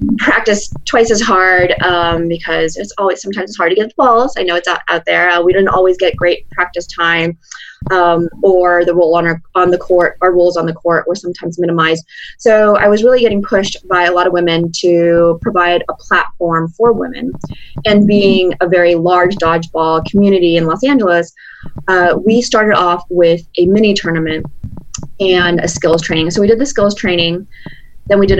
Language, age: English, 20-39